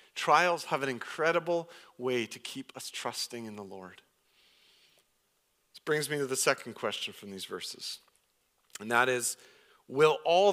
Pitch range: 115-155 Hz